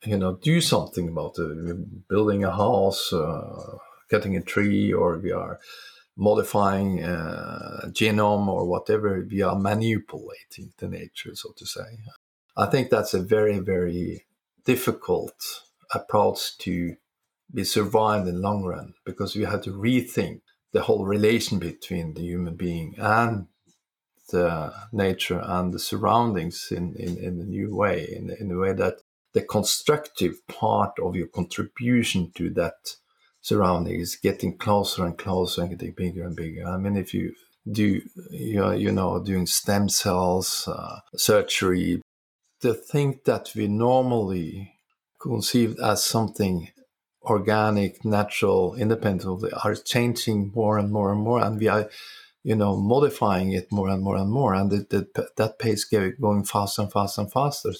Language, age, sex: English, 50-69, male